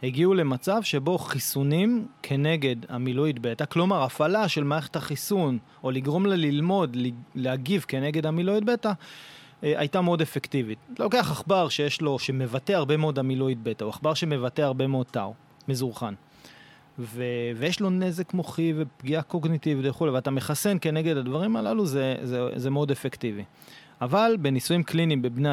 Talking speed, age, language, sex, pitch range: 145 wpm, 30-49, Hebrew, male, 130-180 Hz